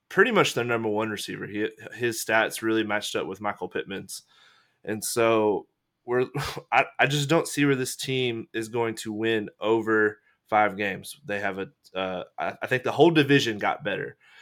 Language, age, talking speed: English, 20-39, 185 wpm